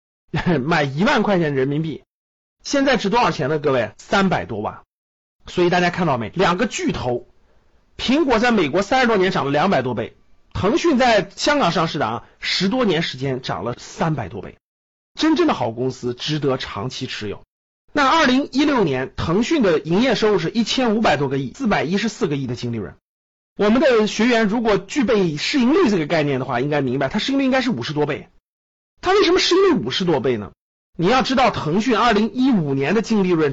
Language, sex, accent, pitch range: Chinese, male, native, 155-245 Hz